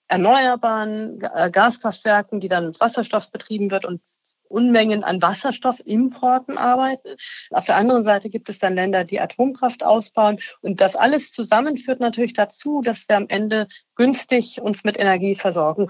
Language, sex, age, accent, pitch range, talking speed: German, female, 40-59, German, 195-240 Hz, 145 wpm